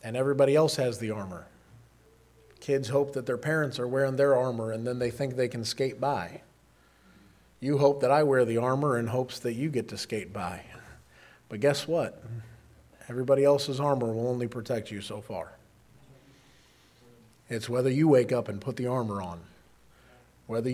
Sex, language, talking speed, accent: male, English, 175 wpm, American